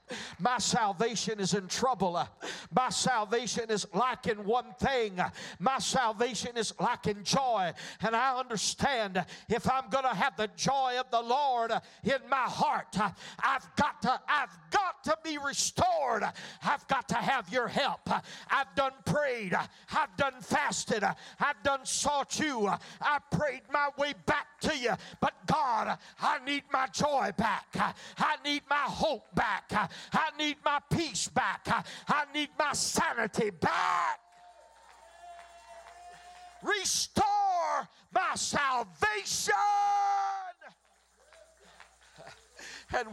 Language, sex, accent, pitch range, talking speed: English, male, American, 235-300 Hz, 130 wpm